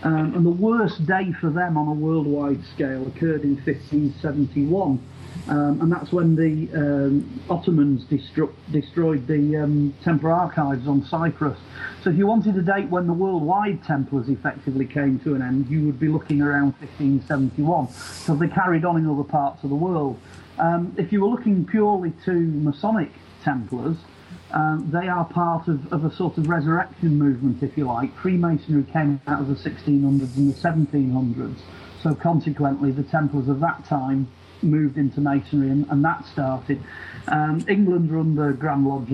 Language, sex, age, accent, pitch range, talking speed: English, male, 40-59, British, 140-160 Hz, 170 wpm